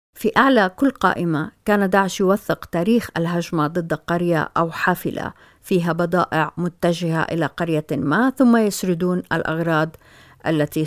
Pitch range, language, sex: 165-195 Hz, Arabic, female